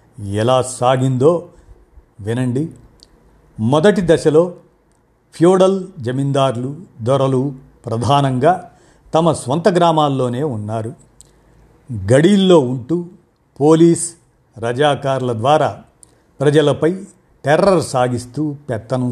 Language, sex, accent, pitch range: Telugu, male, native, 115-155 Hz